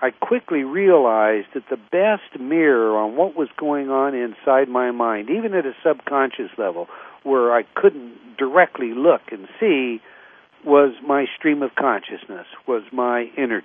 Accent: American